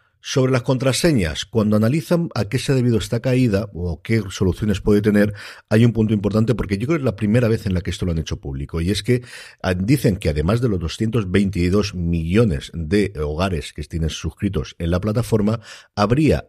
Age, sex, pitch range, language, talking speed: 50-69, male, 80-110 Hz, Spanish, 205 wpm